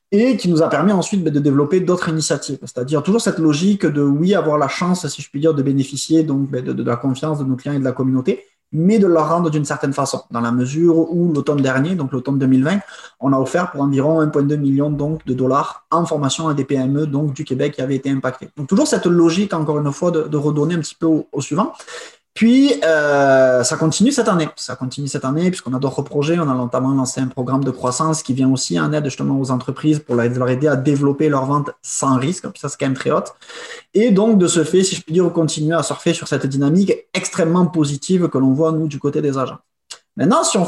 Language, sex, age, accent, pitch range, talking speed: English, male, 20-39, French, 135-170 Hz, 245 wpm